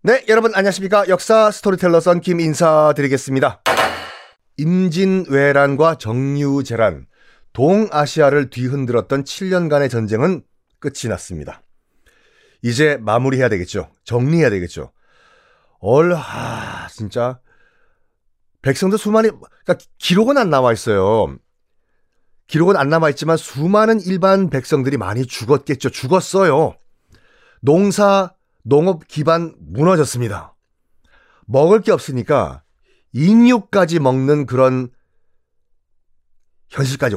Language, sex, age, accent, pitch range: Korean, male, 40-59, native, 135-210 Hz